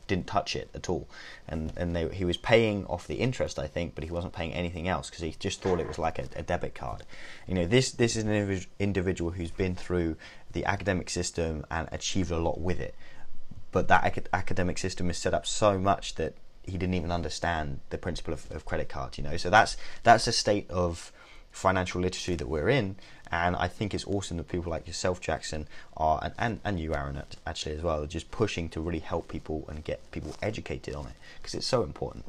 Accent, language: British, English